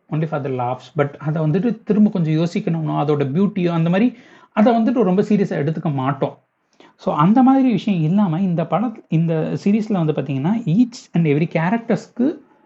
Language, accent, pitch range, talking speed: Tamil, native, 150-210 Hz, 160 wpm